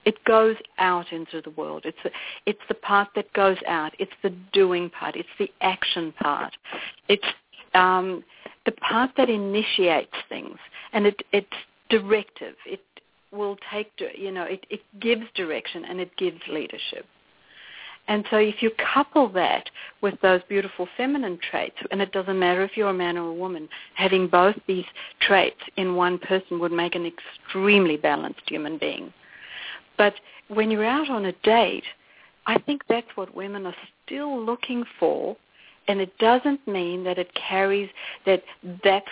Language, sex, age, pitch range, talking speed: English, female, 60-79, 180-220 Hz, 160 wpm